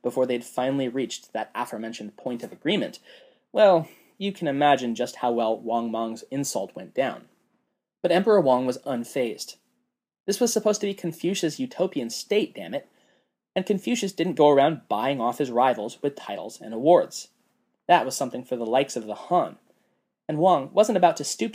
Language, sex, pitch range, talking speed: English, male, 125-180 Hz, 180 wpm